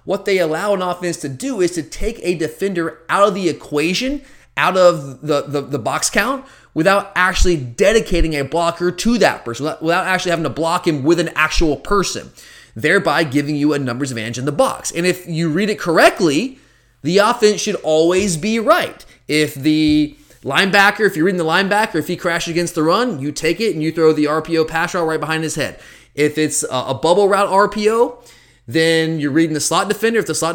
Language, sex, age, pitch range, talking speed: English, male, 30-49, 145-180 Hz, 210 wpm